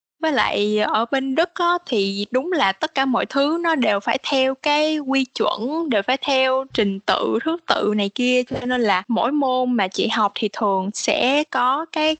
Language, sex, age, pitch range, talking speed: Vietnamese, female, 10-29, 220-290 Hz, 200 wpm